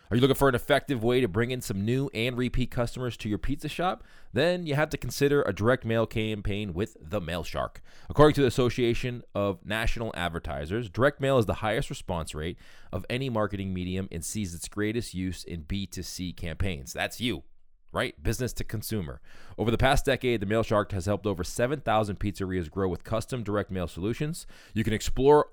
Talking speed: 200 wpm